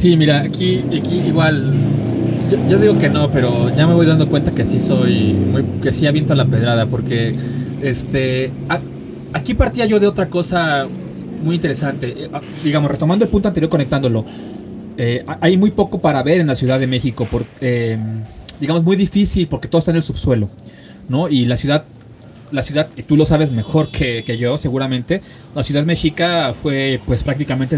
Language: Spanish